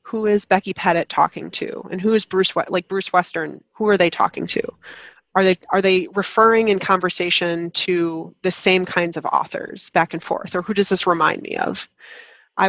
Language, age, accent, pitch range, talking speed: English, 20-39, American, 175-205 Hz, 195 wpm